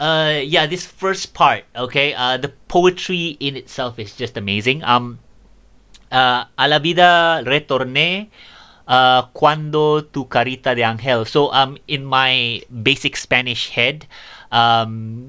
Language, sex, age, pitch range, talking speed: English, male, 30-49, 110-135 Hz, 135 wpm